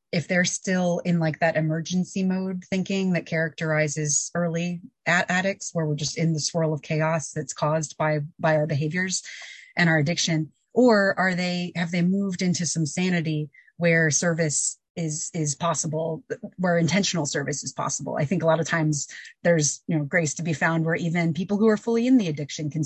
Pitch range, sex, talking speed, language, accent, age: 155-180 Hz, female, 190 wpm, English, American, 30-49